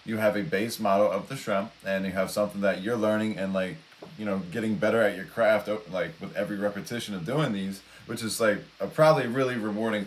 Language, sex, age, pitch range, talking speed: English, male, 20-39, 95-110 Hz, 225 wpm